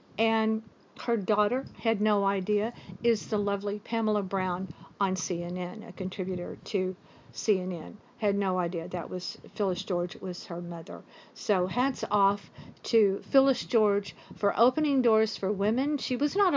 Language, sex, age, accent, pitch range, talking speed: English, female, 50-69, American, 185-225 Hz, 150 wpm